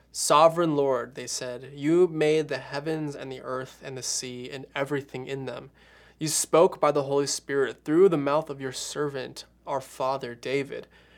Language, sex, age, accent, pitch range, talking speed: English, male, 20-39, American, 130-155 Hz, 175 wpm